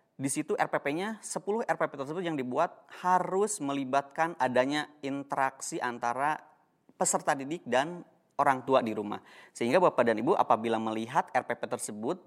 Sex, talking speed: male, 135 wpm